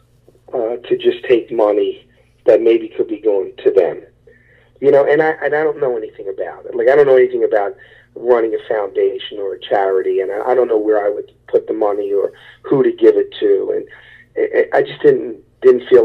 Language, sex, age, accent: English, male, 40-59, American